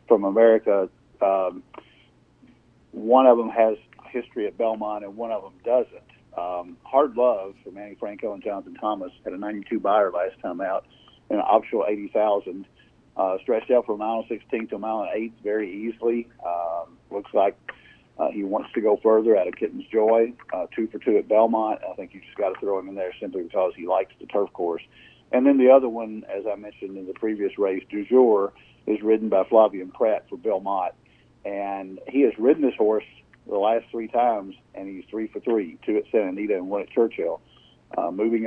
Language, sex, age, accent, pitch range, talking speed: English, male, 50-69, American, 100-115 Hz, 205 wpm